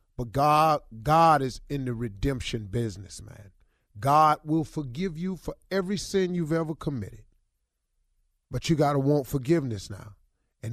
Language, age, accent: English, 30-49, American